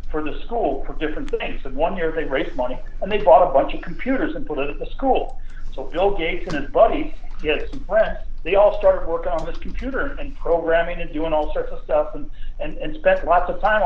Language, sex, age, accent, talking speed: English, male, 50-69, American, 245 wpm